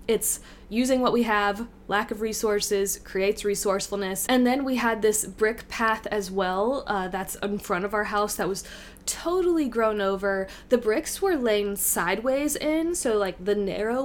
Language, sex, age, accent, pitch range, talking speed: English, female, 20-39, American, 195-245 Hz, 175 wpm